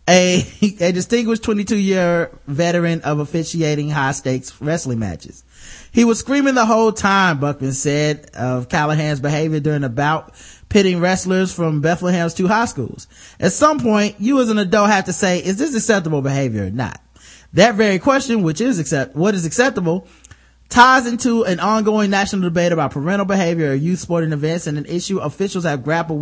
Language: English